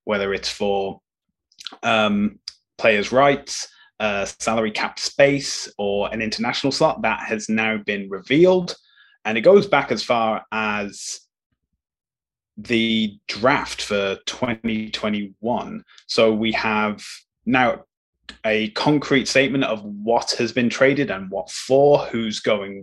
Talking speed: 125 wpm